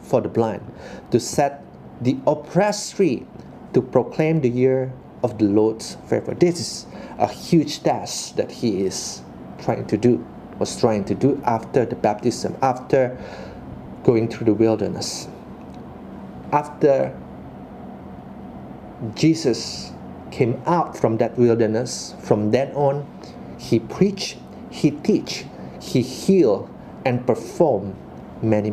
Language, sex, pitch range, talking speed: English, male, 105-160 Hz, 120 wpm